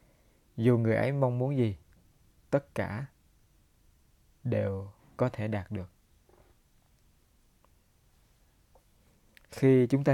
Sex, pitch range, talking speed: male, 105-125 Hz, 95 wpm